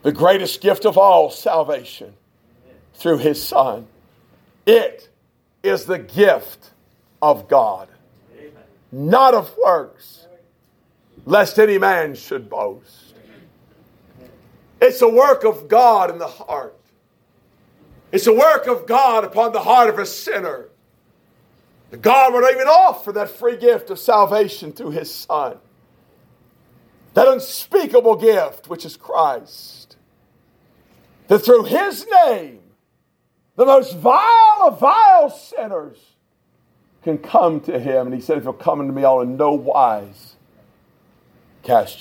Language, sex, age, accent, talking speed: English, male, 50-69, American, 125 wpm